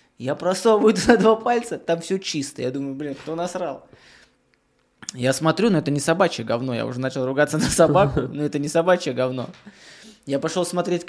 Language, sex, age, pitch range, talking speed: Russian, male, 20-39, 145-185 Hz, 185 wpm